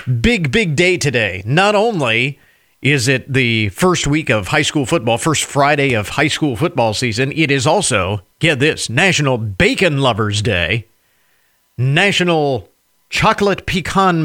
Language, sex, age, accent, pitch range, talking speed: English, male, 40-59, American, 115-165 Hz, 145 wpm